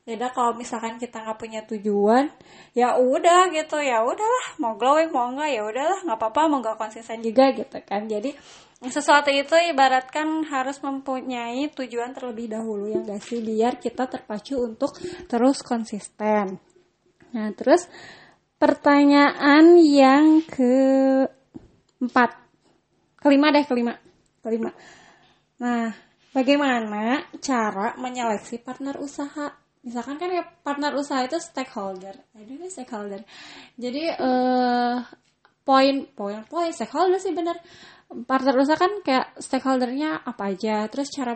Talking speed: 120 wpm